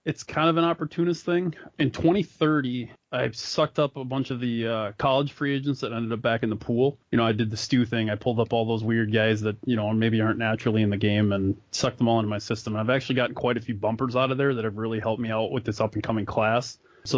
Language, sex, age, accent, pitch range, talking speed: English, male, 20-39, American, 110-130 Hz, 280 wpm